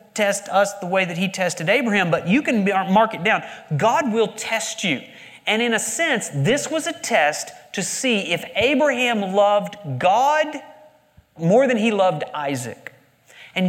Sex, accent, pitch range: male, American, 180-255 Hz